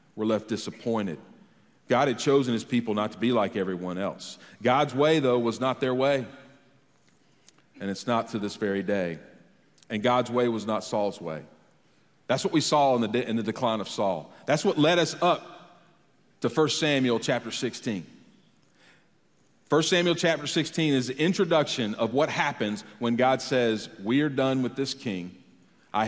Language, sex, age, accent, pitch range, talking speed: English, male, 40-59, American, 110-140 Hz, 170 wpm